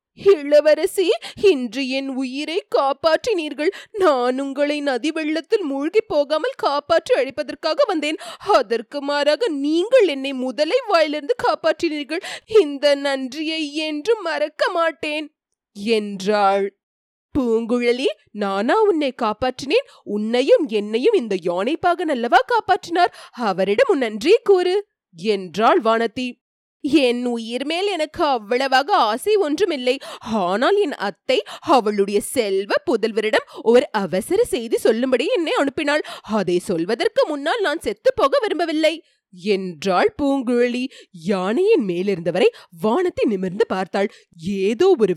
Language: Tamil